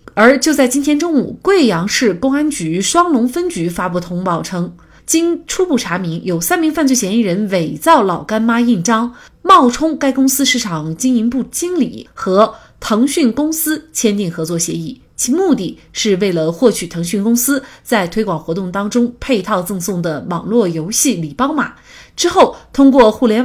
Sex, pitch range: female, 190-275 Hz